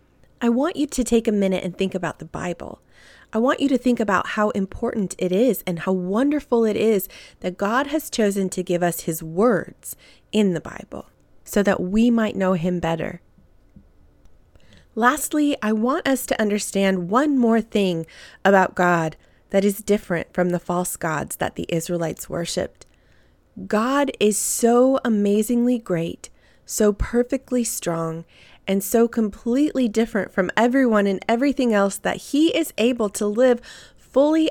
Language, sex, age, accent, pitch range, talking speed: English, female, 20-39, American, 190-255 Hz, 160 wpm